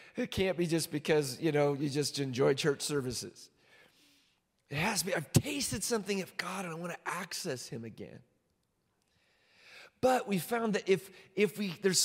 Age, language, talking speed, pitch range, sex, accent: 30-49, English, 180 wpm, 140-195 Hz, male, American